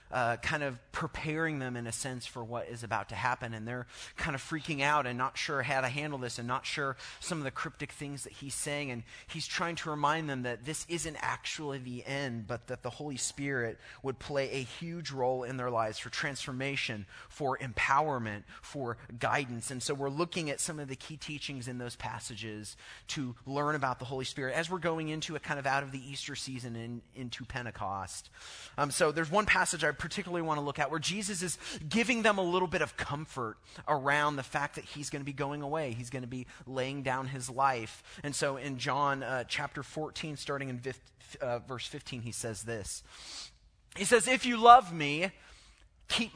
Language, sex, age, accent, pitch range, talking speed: English, male, 30-49, American, 120-150 Hz, 210 wpm